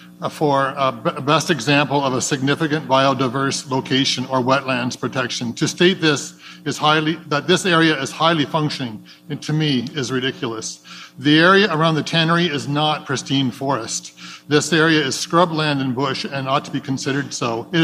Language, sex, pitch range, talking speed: English, male, 130-160 Hz, 170 wpm